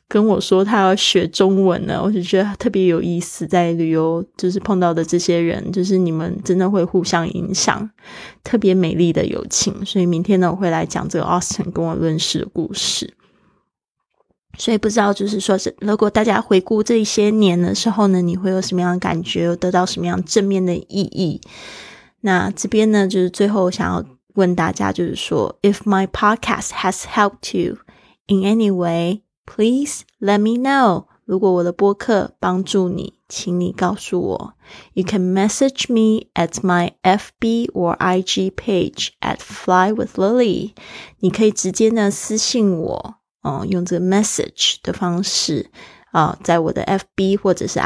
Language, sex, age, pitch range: Chinese, female, 20-39, 180-210 Hz